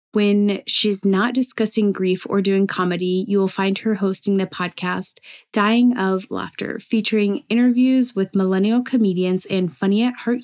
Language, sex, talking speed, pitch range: English, female, 145 wpm, 185-220 Hz